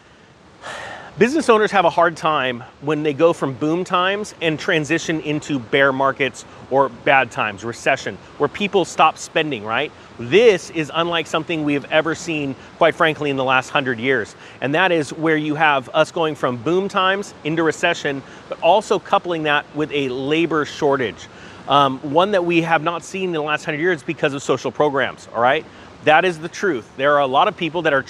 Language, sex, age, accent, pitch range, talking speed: English, male, 30-49, American, 140-180 Hz, 195 wpm